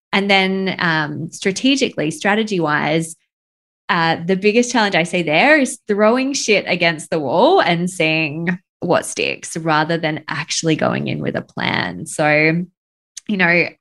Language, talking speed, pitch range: English, 150 wpm, 160-195 Hz